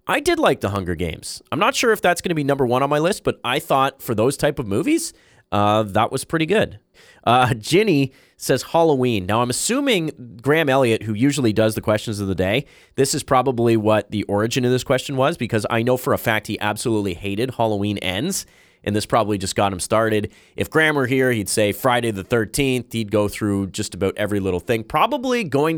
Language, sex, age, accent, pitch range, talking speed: English, male, 30-49, American, 105-135 Hz, 225 wpm